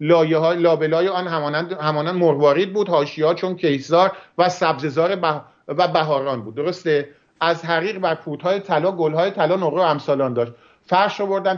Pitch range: 160-195 Hz